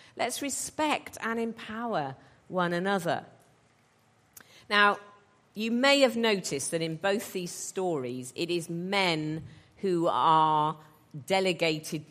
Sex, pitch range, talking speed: female, 160-210 Hz, 110 wpm